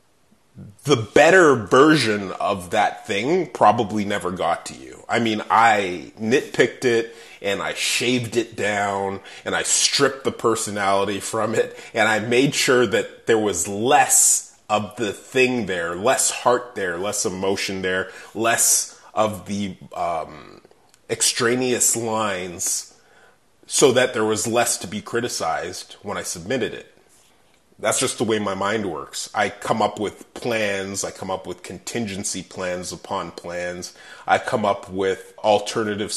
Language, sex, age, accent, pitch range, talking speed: English, male, 30-49, American, 95-115 Hz, 150 wpm